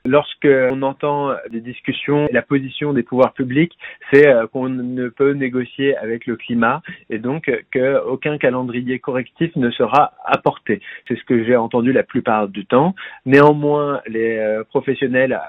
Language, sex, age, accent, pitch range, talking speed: French, male, 30-49, French, 120-150 Hz, 145 wpm